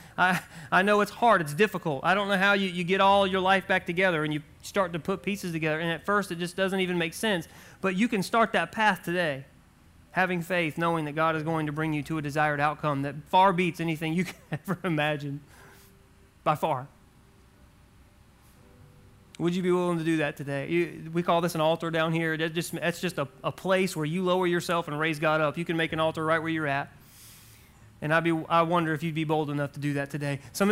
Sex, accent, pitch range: male, American, 155-190 Hz